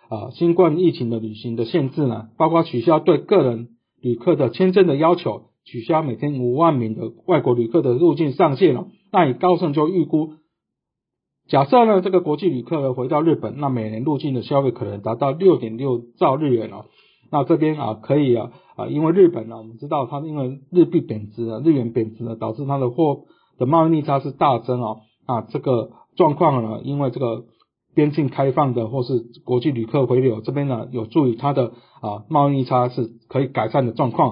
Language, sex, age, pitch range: Chinese, male, 50-69, 120-160 Hz